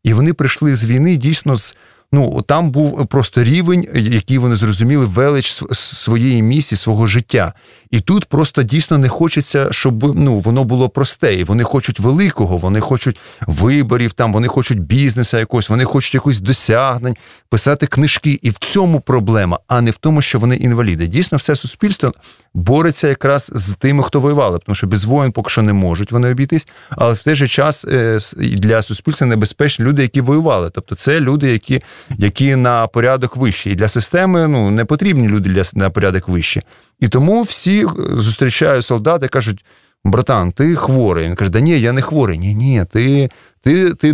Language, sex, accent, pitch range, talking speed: Russian, male, native, 115-145 Hz, 175 wpm